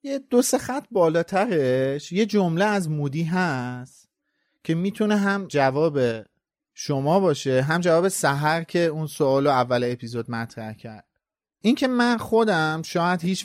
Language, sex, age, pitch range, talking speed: Persian, male, 30-49, 135-200 Hz, 145 wpm